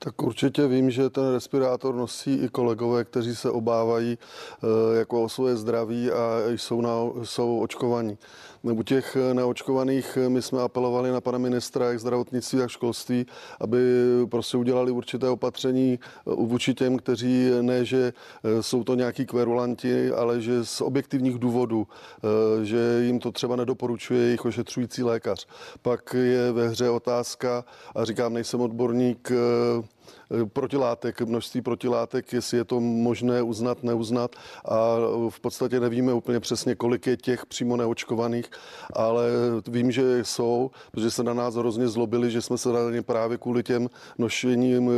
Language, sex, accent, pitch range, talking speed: Czech, male, native, 115-125 Hz, 140 wpm